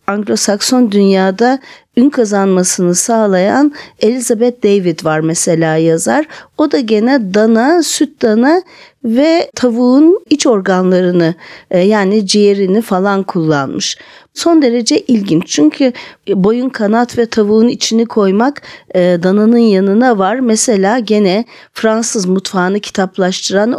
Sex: female